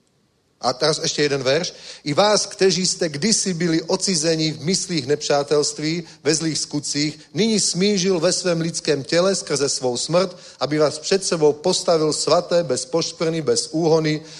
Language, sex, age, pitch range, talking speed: Czech, male, 40-59, 145-175 Hz, 155 wpm